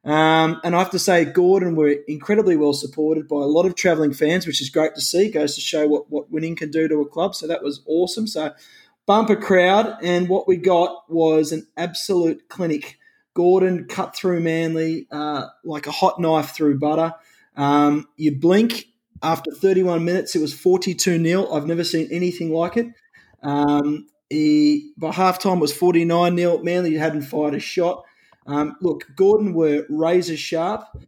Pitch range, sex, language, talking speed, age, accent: 155-185 Hz, male, English, 180 wpm, 20-39, Australian